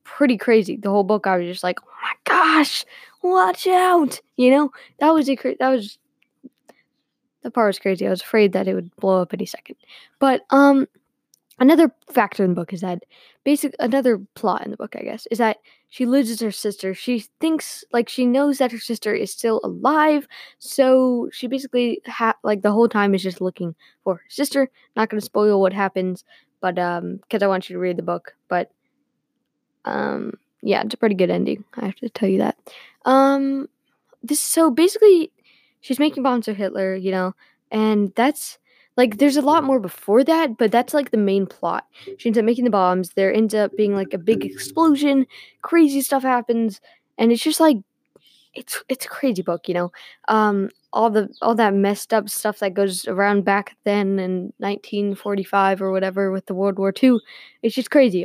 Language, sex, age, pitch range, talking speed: English, female, 10-29, 195-270 Hz, 200 wpm